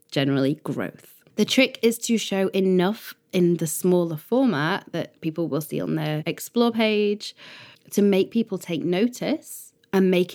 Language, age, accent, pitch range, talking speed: English, 20-39, British, 155-190 Hz, 155 wpm